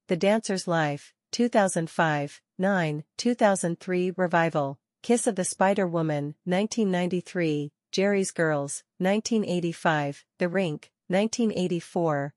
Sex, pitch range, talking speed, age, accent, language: female, 160-200 Hz, 90 wpm, 40-59, American, English